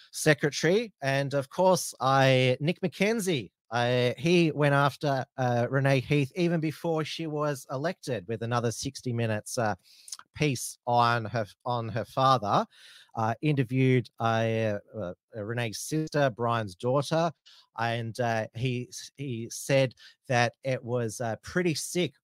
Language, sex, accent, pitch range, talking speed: English, male, Australian, 115-140 Hz, 135 wpm